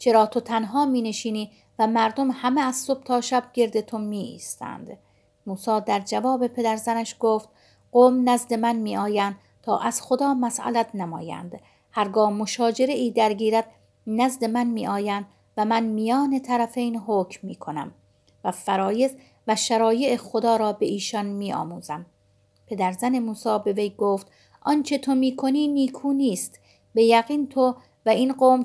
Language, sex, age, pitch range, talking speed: Persian, female, 50-69, 205-245 Hz, 155 wpm